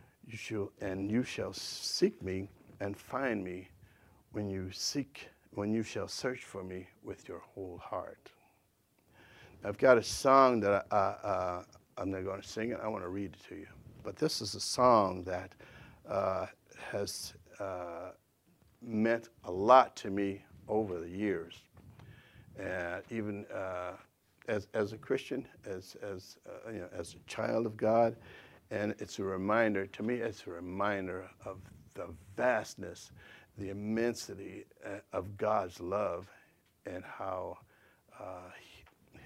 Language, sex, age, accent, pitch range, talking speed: English, male, 60-79, American, 95-115 Hz, 150 wpm